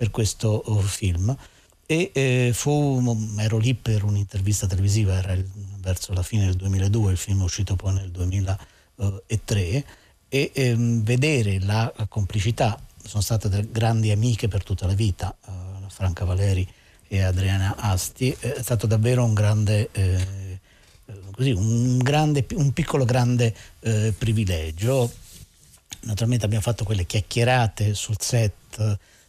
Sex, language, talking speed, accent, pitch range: male, Italian, 135 wpm, native, 95-120 Hz